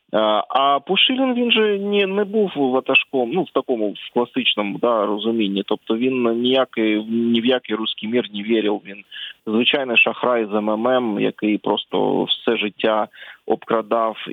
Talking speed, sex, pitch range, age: 140 wpm, male, 105-120 Hz, 20-39